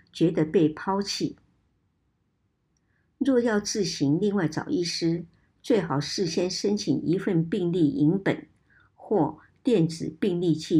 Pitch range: 155-200 Hz